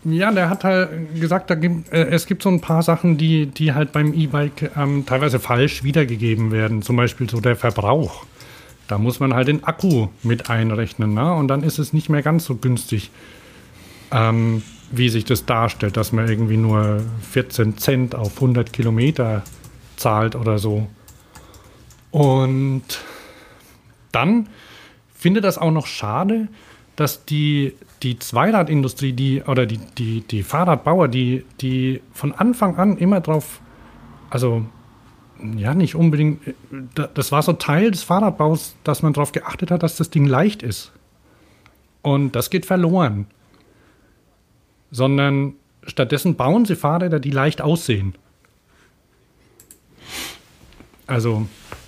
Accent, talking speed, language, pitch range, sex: German, 140 wpm, German, 115-155 Hz, male